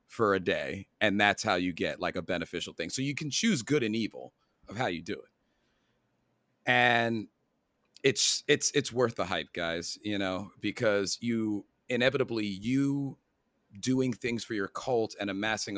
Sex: male